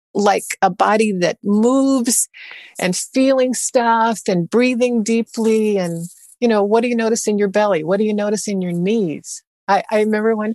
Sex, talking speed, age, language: female, 180 wpm, 50-69, English